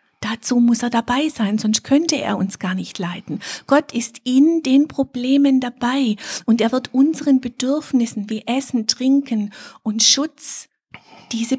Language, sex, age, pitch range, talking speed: German, female, 50-69, 205-250 Hz, 150 wpm